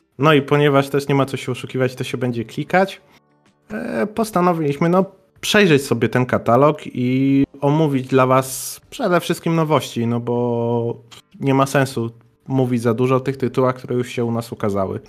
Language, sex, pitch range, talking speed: Polish, male, 120-145 Hz, 165 wpm